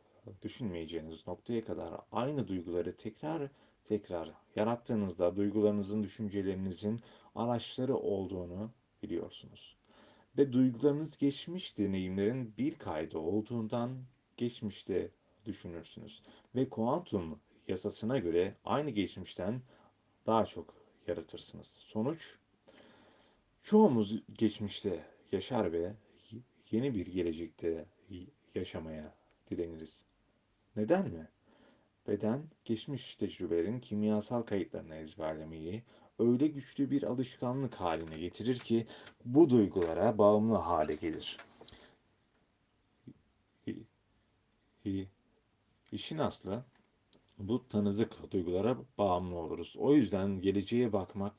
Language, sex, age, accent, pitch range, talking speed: Turkish, male, 40-59, native, 95-120 Hz, 85 wpm